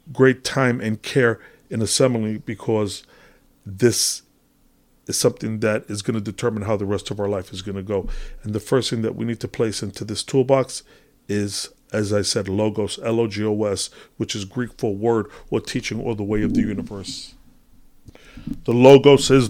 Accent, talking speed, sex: American, 180 wpm, male